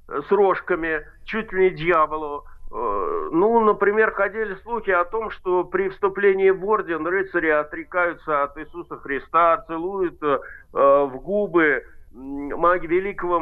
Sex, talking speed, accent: male, 115 wpm, native